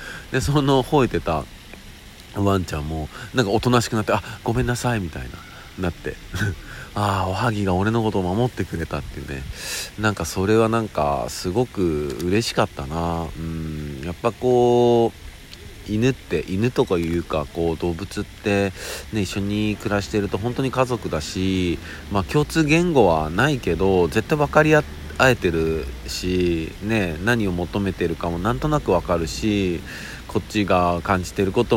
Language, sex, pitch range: Japanese, male, 85-110 Hz